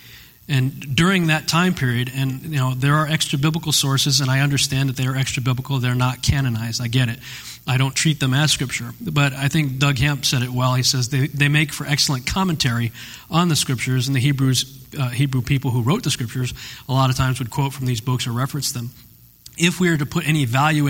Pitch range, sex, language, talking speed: 125-145 Hz, male, English, 225 wpm